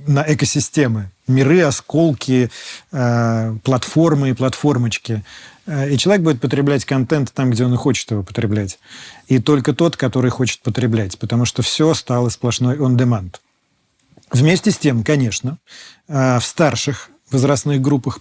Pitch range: 120-145 Hz